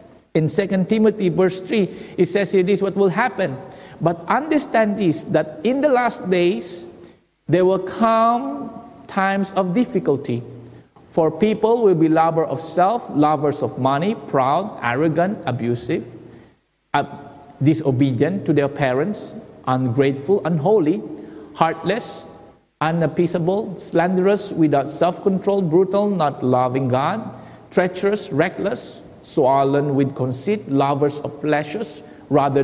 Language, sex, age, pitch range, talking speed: English, male, 50-69, 150-210 Hz, 120 wpm